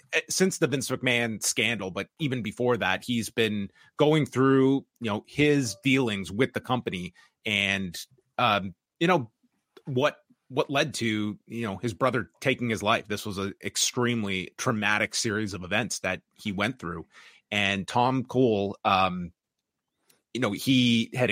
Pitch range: 100-130 Hz